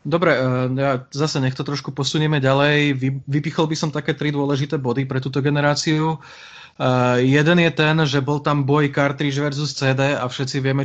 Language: Slovak